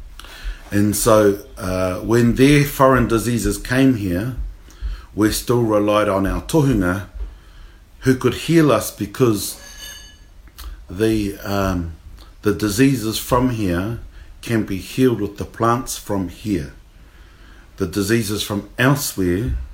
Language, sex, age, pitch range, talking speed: English, male, 50-69, 85-115 Hz, 115 wpm